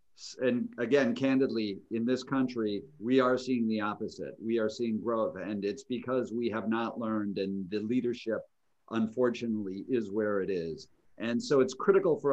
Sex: male